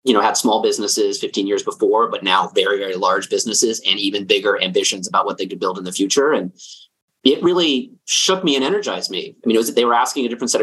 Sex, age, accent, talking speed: male, 30-49, American, 255 wpm